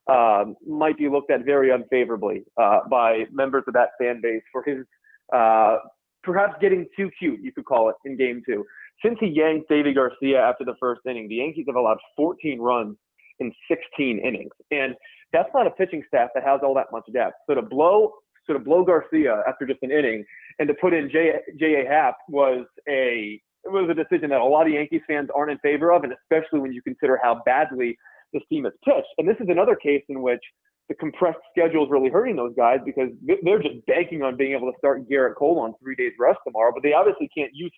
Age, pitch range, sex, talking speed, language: 30-49, 135-180 Hz, male, 220 wpm, English